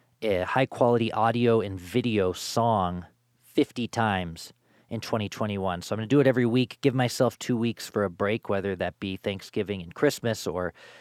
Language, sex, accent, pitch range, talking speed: English, male, American, 100-130 Hz, 175 wpm